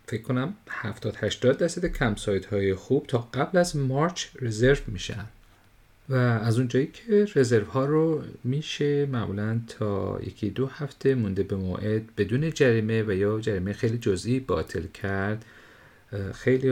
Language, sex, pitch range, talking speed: Persian, male, 95-125 Hz, 145 wpm